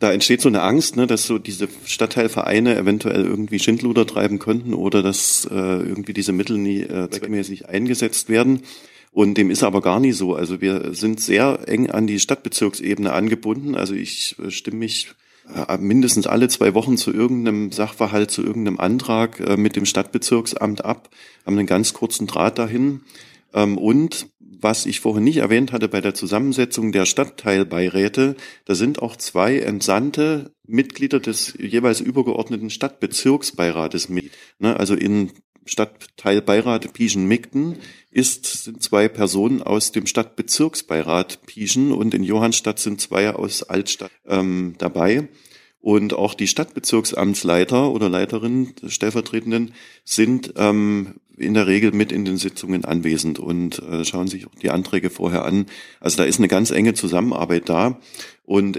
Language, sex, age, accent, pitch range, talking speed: German, male, 40-59, German, 95-115 Hz, 150 wpm